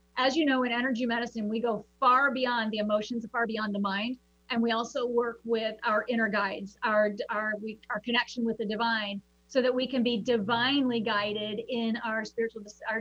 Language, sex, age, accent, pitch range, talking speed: English, female, 40-59, American, 210-255 Hz, 195 wpm